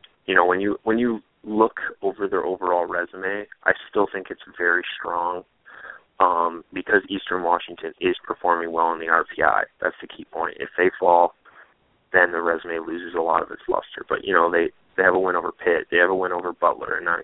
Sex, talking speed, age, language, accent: male, 210 wpm, 20-39, English, American